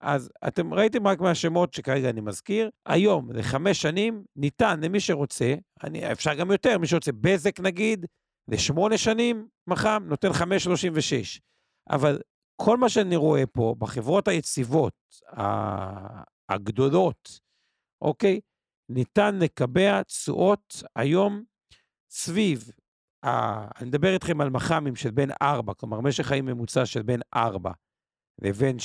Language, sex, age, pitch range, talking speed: Hebrew, male, 50-69, 130-195 Hz, 130 wpm